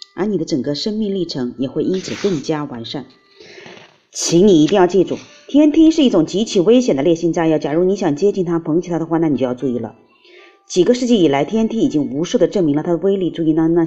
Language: Chinese